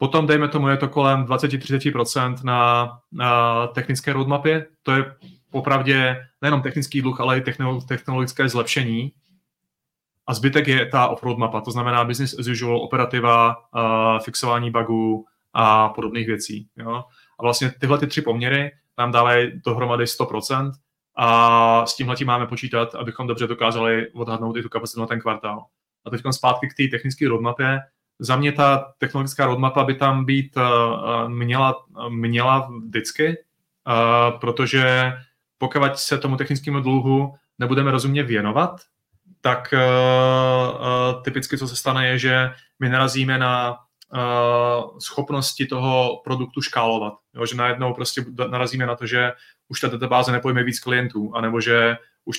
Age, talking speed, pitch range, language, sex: 30-49, 140 wpm, 120-135 Hz, Czech, male